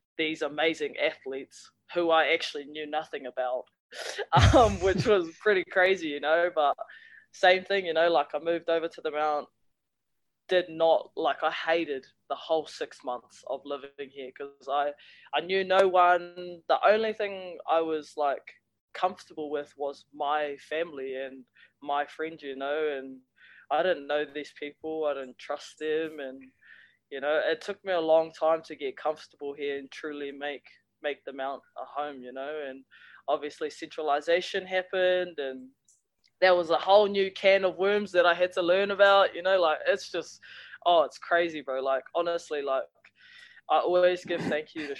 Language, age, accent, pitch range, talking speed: English, 20-39, Australian, 140-180 Hz, 175 wpm